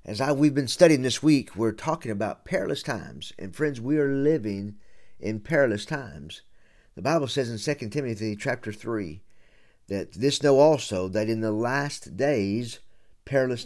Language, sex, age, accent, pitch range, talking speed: English, male, 50-69, American, 100-135 Hz, 165 wpm